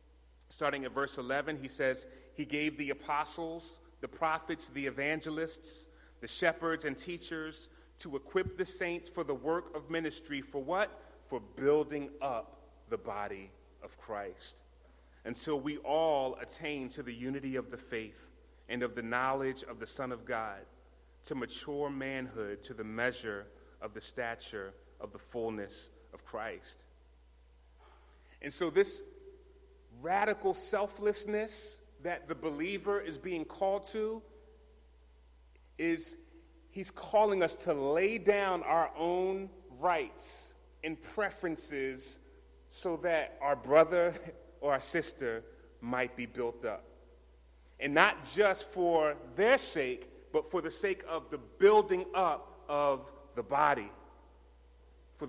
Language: English